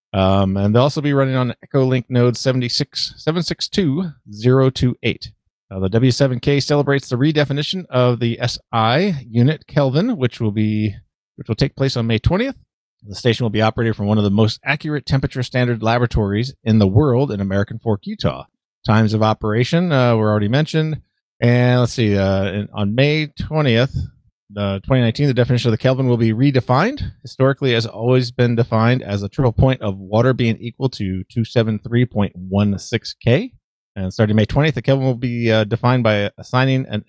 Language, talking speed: English, 170 wpm